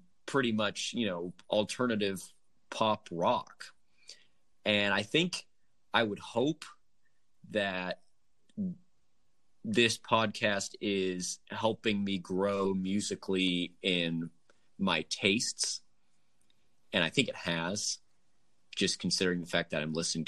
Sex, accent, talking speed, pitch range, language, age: male, American, 105 wpm, 85-110 Hz, English, 30-49